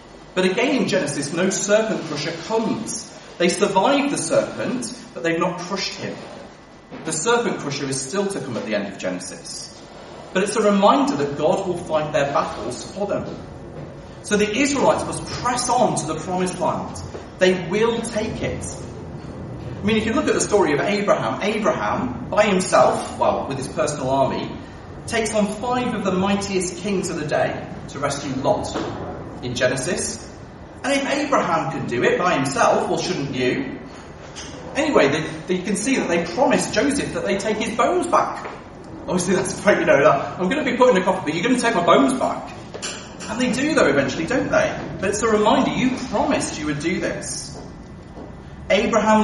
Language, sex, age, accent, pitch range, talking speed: English, male, 40-59, British, 170-225 Hz, 185 wpm